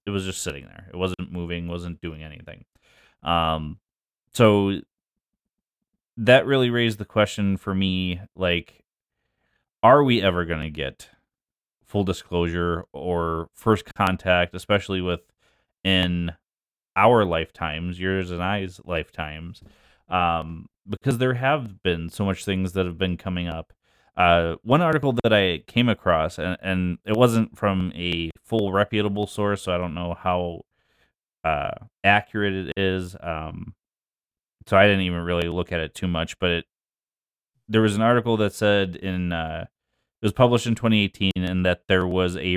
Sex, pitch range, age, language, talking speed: male, 85-105 Hz, 30-49, English, 155 wpm